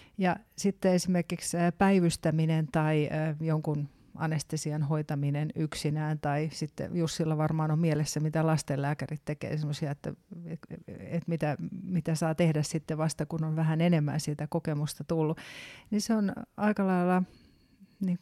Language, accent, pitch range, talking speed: Finnish, native, 155-180 Hz, 130 wpm